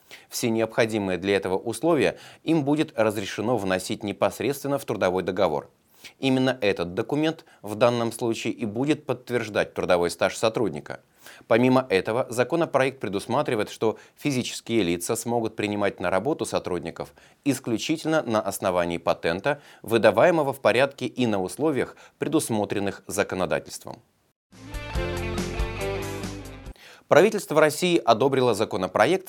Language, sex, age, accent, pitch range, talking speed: Russian, male, 30-49, native, 100-140 Hz, 110 wpm